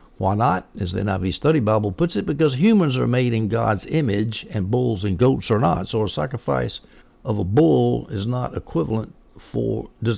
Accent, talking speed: American, 195 wpm